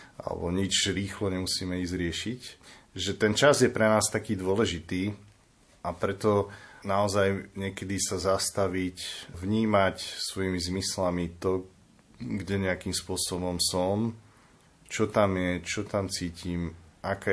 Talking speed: 120 wpm